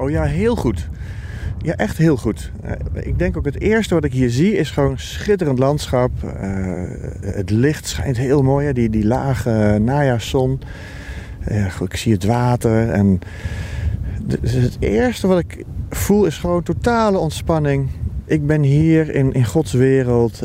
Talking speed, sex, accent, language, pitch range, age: 155 wpm, male, Dutch, Dutch, 100-135 Hz, 40-59